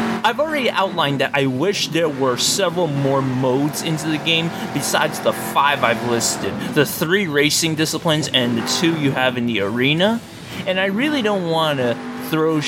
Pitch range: 130-180 Hz